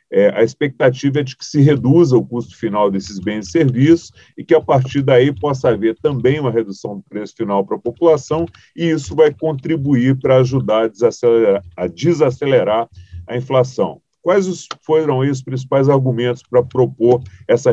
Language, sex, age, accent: Portuguese, male, 40-59, Brazilian